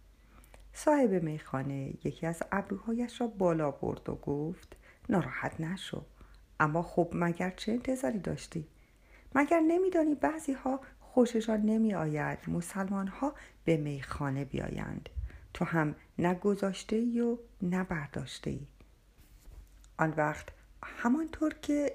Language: Persian